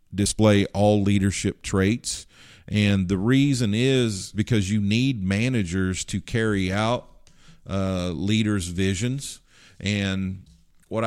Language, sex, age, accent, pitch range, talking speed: English, male, 50-69, American, 95-110 Hz, 110 wpm